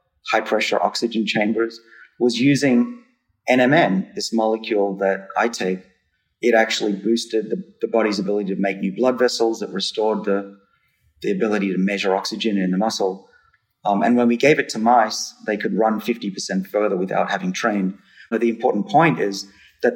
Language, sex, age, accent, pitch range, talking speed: English, male, 30-49, Australian, 100-120 Hz, 170 wpm